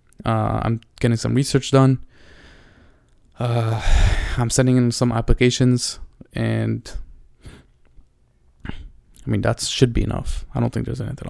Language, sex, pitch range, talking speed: Italian, male, 110-125 Hz, 125 wpm